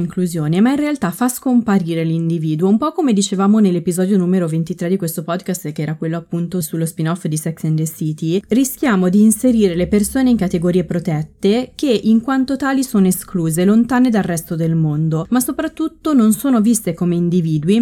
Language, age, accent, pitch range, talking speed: Italian, 30-49, native, 170-225 Hz, 180 wpm